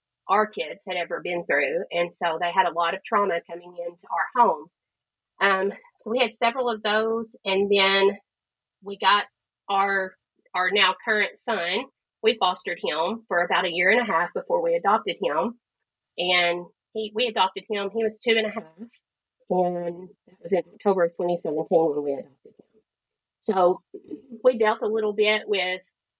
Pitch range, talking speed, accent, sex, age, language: 175-220 Hz, 175 wpm, American, female, 30-49, English